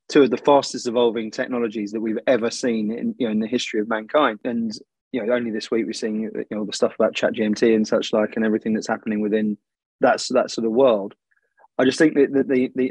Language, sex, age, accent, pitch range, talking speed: English, male, 20-39, British, 110-125 Hz, 245 wpm